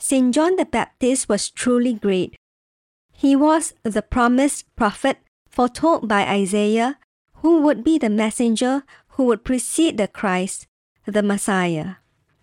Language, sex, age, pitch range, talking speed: English, male, 50-69, 215-270 Hz, 130 wpm